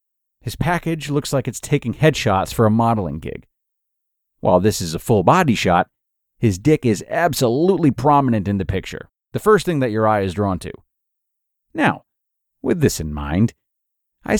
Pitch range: 95-135 Hz